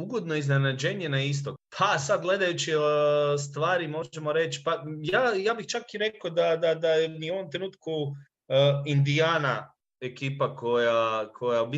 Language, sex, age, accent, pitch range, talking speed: English, male, 30-49, Croatian, 130-175 Hz, 155 wpm